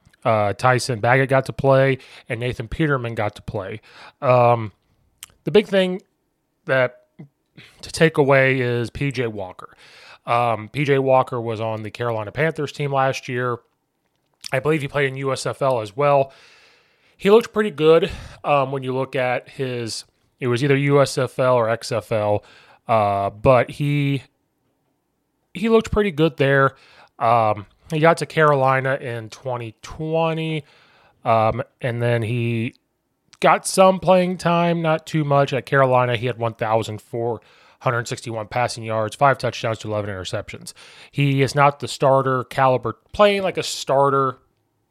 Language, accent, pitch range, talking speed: English, American, 115-145 Hz, 140 wpm